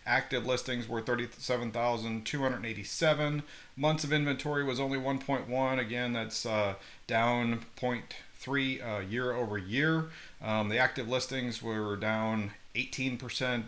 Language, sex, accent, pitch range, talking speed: English, male, American, 110-140 Hz, 145 wpm